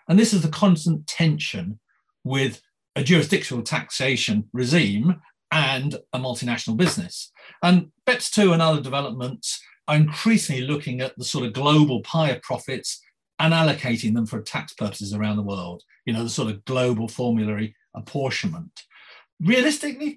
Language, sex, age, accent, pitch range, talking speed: English, male, 40-59, British, 125-170 Hz, 150 wpm